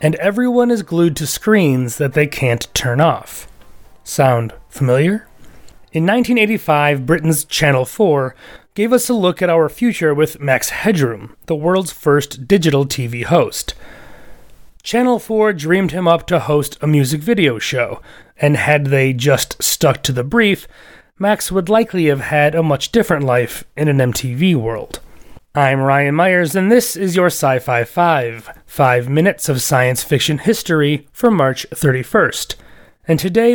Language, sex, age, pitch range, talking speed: English, male, 30-49, 135-195 Hz, 155 wpm